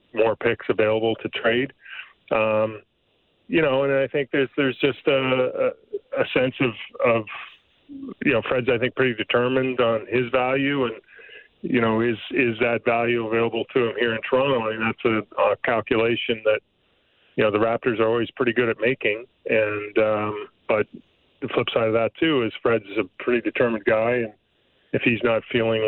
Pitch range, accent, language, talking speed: 110-160 Hz, American, English, 185 wpm